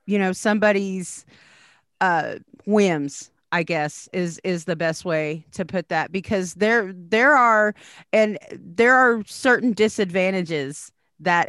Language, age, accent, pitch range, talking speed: English, 40-59, American, 185-225 Hz, 130 wpm